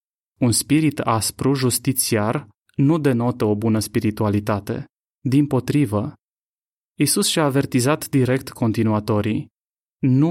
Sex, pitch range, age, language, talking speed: male, 115-145 Hz, 20-39, Romanian, 100 wpm